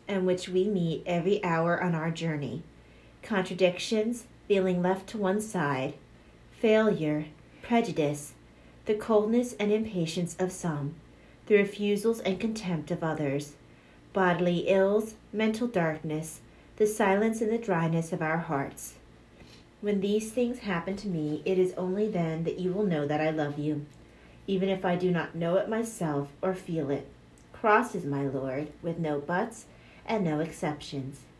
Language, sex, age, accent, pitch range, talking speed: English, female, 40-59, American, 155-205 Hz, 155 wpm